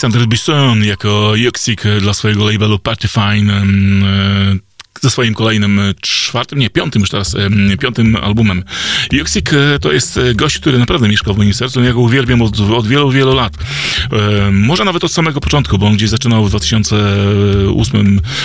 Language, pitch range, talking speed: Polish, 100-110 Hz, 155 wpm